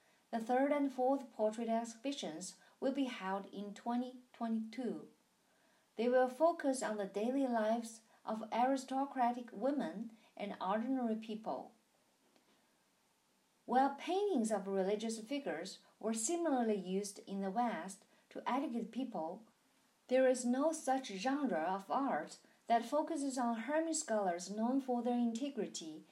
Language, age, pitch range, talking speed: English, 50-69, 220-275 Hz, 125 wpm